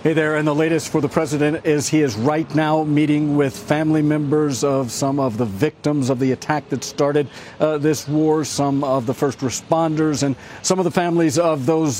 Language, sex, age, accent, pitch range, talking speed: English, male, 50-69, American, 140-160 Hz, 210 wpm